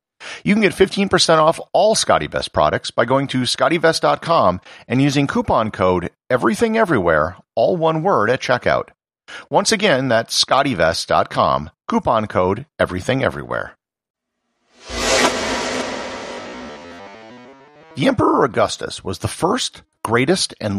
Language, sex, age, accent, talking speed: English, male, 50-69, American, 110 wpm